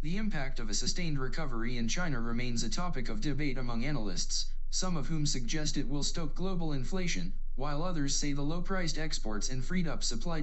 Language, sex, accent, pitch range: Chinese, male, American, 125-165 Hz